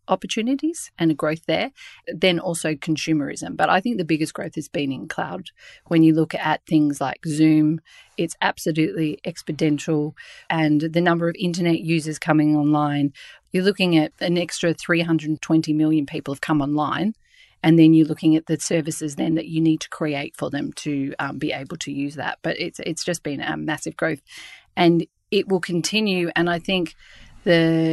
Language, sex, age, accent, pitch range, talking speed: English, female, 40-59, Australian, 155-175 Hz, 185 wpm